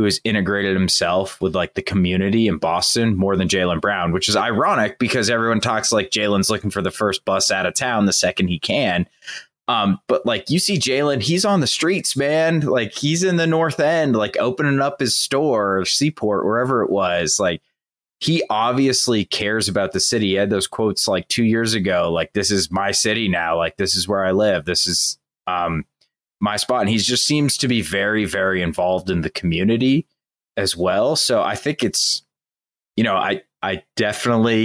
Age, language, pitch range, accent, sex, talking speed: 20-39, English, 95-135 Hz, American, male, 200 wpm